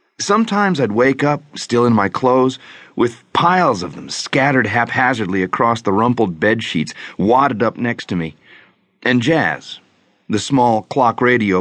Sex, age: male, 40-59